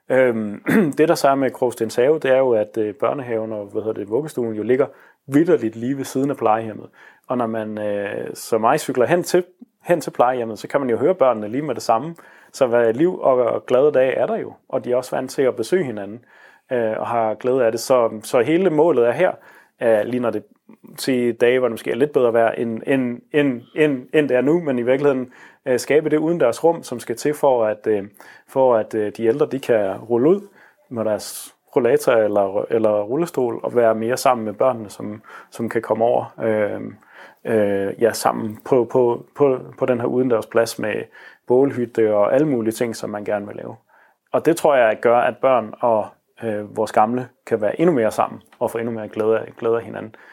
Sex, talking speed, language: male, 220 wpm, Danish